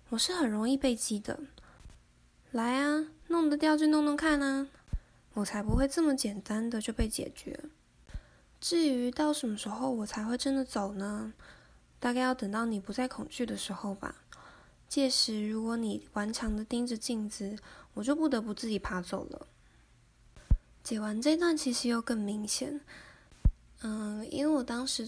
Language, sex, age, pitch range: Chinese, female, 10-29, 210-260 Hz